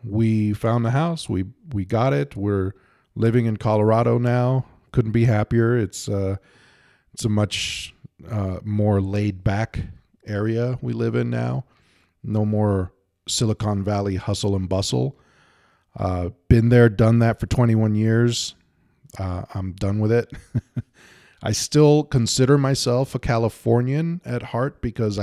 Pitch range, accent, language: 95-115 Hz, American, English